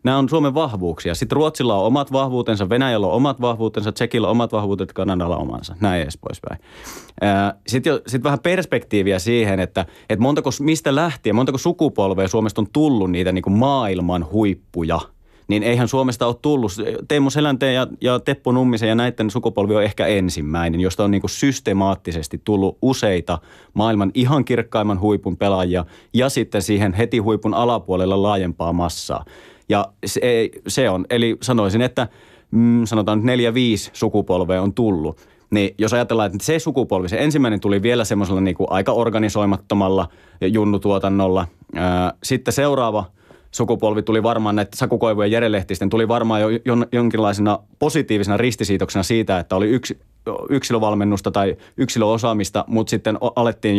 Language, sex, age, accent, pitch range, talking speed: Finnish, male, 30-49, native, 95-120 Hz, 140 wpm